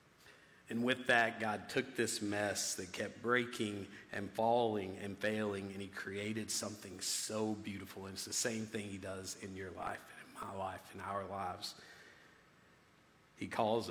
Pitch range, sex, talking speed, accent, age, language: 100-115 Hz, male, 170 wpm, American, 40-59, English